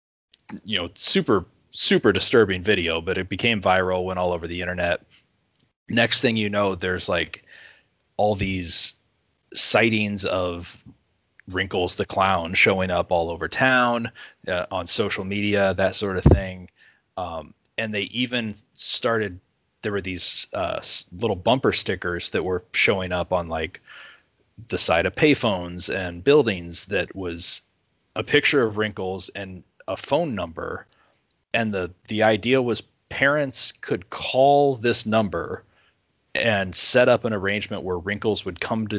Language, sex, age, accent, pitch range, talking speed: English, male, 20-39, American, 90-110 Hz, 145 wpm